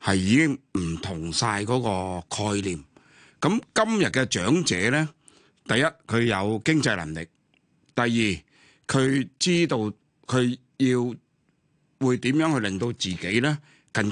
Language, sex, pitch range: Chinese, male, 100-145 Hz